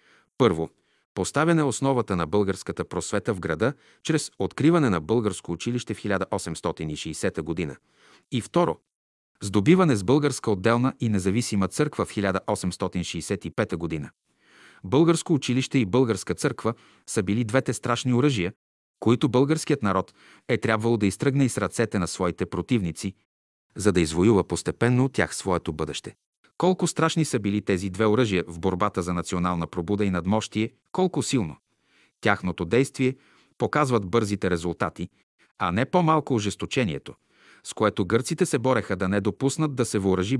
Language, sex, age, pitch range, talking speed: Bulgarian, male, 30-49, 95-130 Hz, 140 wpm